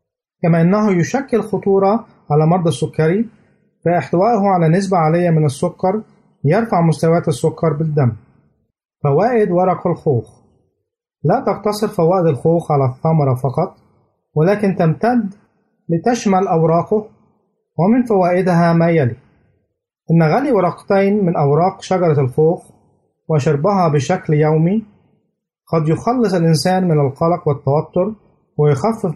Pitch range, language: 150-195 Hz, Arabic